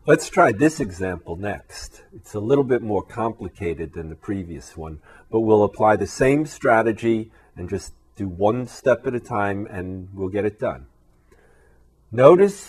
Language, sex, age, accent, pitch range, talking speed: English, male, 50-69, American, 85-115 Hz, 165 wpm